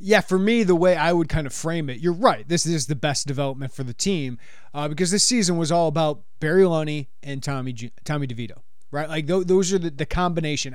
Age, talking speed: 30-49, 230 wpm